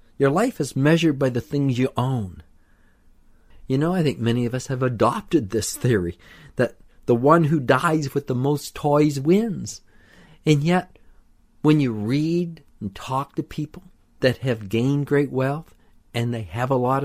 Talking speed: 175 wpm